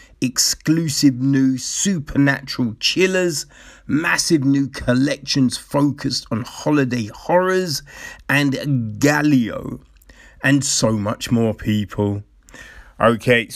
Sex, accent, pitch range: male, British, 115-145 Hz